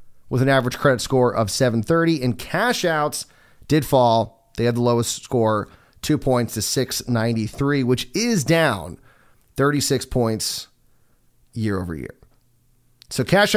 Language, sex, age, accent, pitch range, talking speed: English, male, 30-49, American, 110-140 Hz, 135 wpm